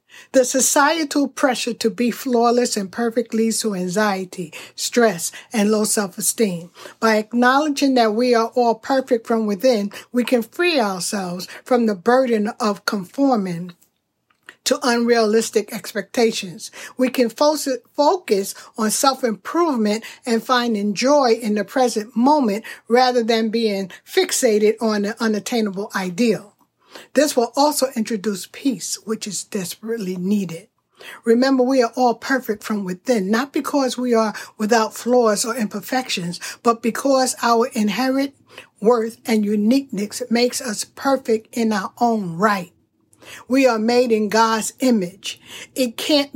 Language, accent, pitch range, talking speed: English, American, 215-260 Hz, 130 wpm